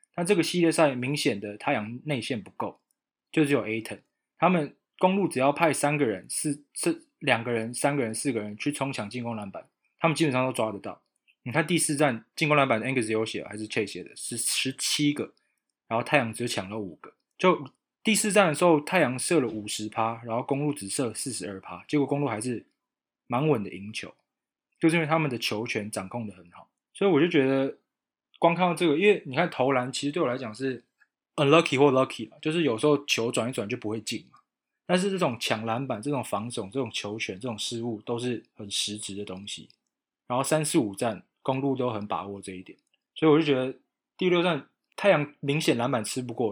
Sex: male